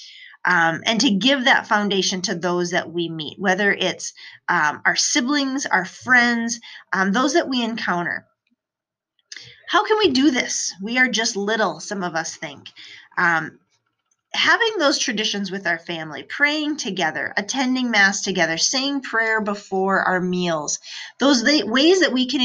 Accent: American